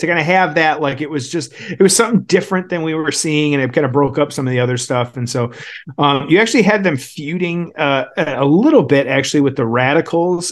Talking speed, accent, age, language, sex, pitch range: 250 wpm, American, 30-49, English, male, 130-160 Hz